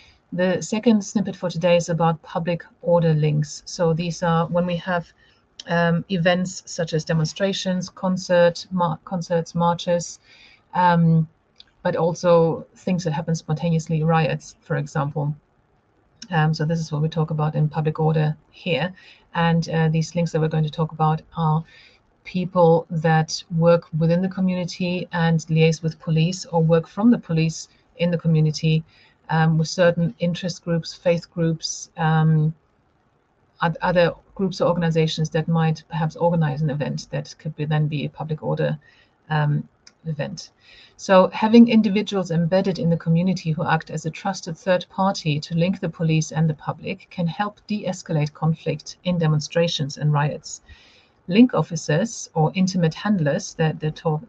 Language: English